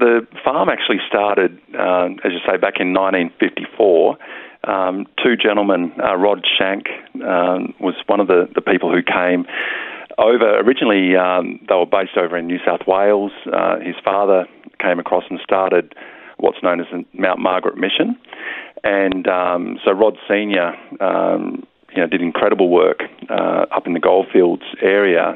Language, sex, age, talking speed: English, male, 40-59, 155 wpm